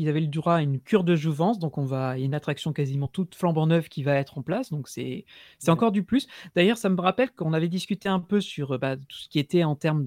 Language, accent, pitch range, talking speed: French, French, 150-195 Hz, 290 wpm